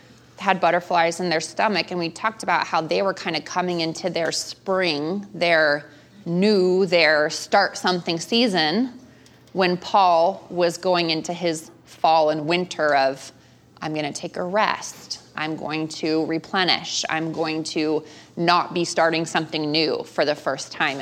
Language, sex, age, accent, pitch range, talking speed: English, female, 20-39, American, 160-215 Hz, 160 wpm